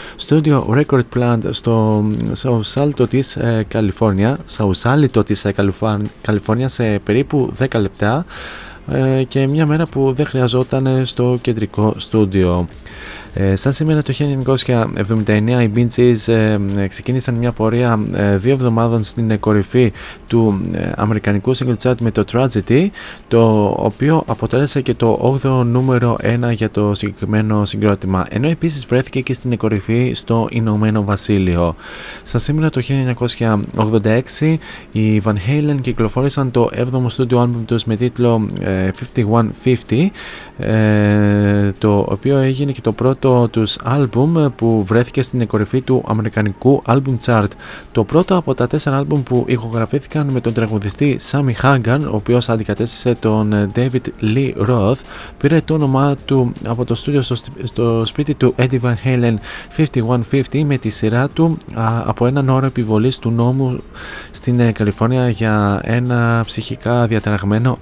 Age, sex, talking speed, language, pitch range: 20-39, male, 125 wpm, Greek, 110-130 Hz